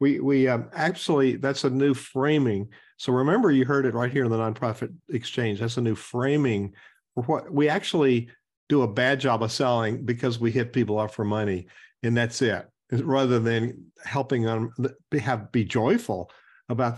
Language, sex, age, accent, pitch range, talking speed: English, male, 50-69, American, 120-150 Hz, 185 wpm